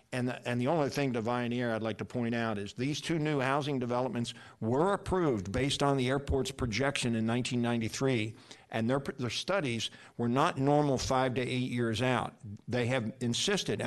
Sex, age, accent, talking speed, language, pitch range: male, 50-69, American, 185 wpm, English, 115-135 Hz